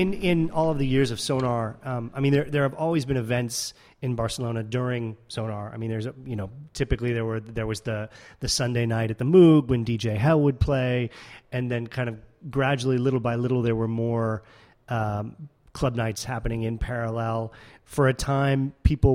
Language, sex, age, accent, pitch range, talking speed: English, male, 30-49, American, 115-130 Hz, 205 wpm